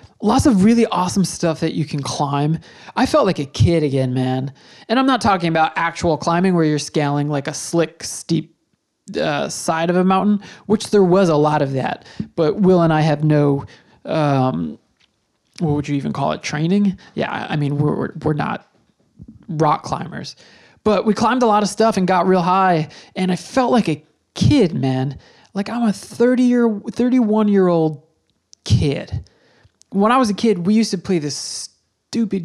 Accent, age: American, 20-39